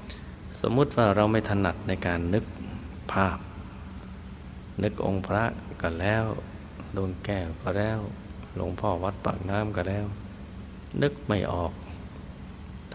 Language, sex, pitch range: Thai, male, 90-100 Hz